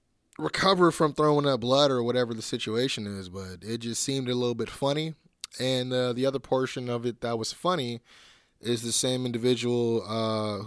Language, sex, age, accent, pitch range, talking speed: English, male, 20-39, American, 110-130 Hz, 185 wpm